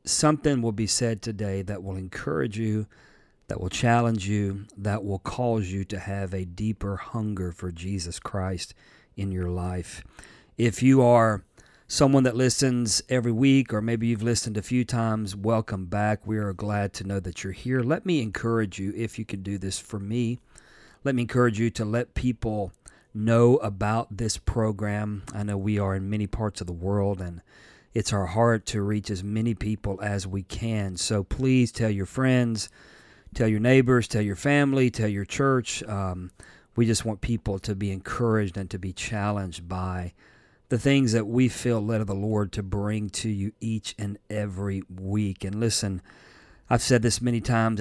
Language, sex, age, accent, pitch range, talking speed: English, male, 40-59, American, 100-115 Hz, 185 wpm